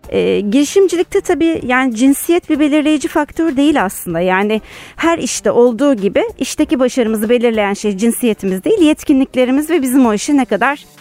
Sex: female